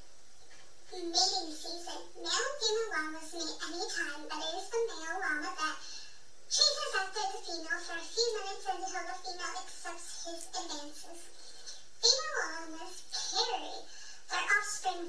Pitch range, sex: 335-405 Hz, male